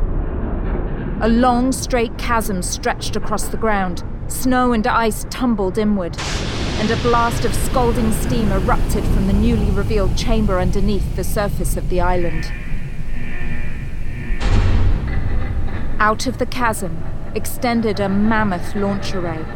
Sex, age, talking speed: female, 40-59, 125 wpm